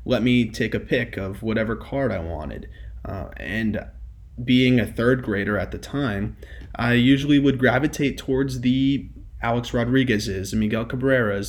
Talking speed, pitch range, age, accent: 150 wpm, 105-130 Hz, 20-39, American